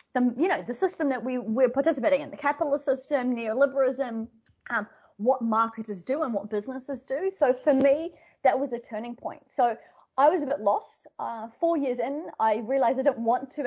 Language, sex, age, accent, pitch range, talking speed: English, female, 20-39, Australian, 220-275 Hz, 200 wpm